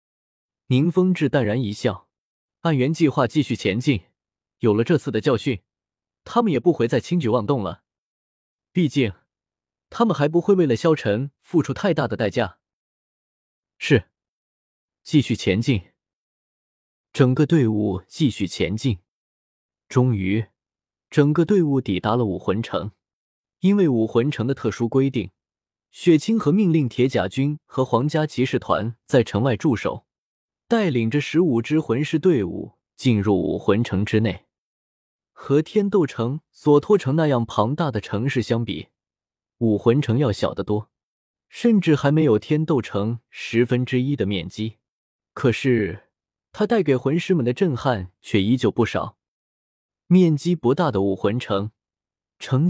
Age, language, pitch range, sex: 20-39, Chinese, 105-155 Hz, male